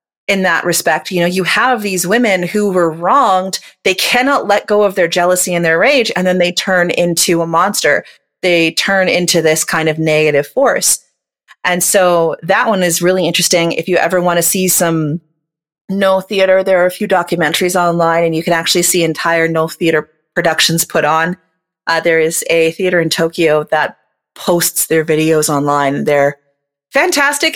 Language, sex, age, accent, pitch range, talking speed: English, female, 30-49, American, 160-195 Hz, 185 wpm